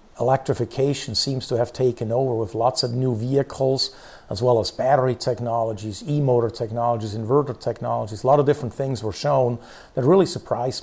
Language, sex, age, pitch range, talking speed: English, male, 50-69, 115-140 Hz, 165 wpm